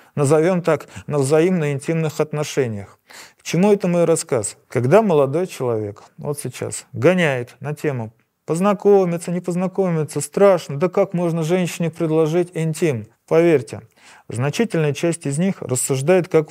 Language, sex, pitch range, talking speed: Russian, male, 130-175 Hz, 125 wpm